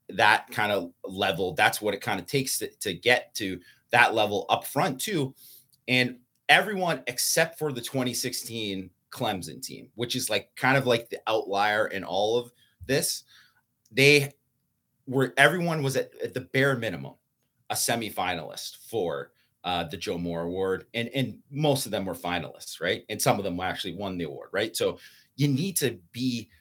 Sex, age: male, 30-49